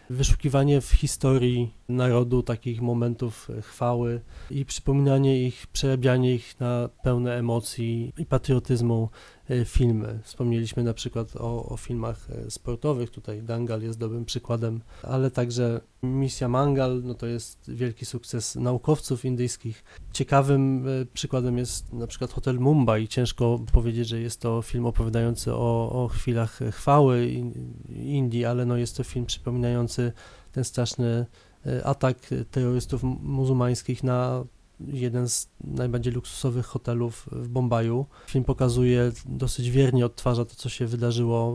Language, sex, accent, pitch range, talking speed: Polish, male, native, 115-130 Hz, 130 wpm